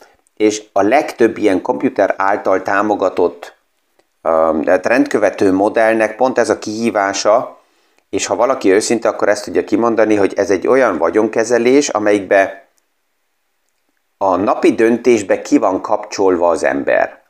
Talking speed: 125 wpm